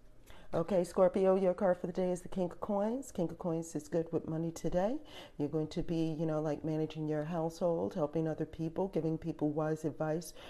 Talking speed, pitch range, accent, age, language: 210 wpm, 160-195 Hz, American, 40-59, English